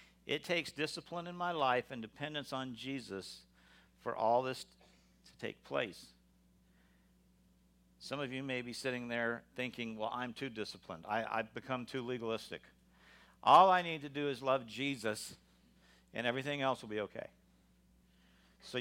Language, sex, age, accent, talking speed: English, male, 50-69, American, 150 wpm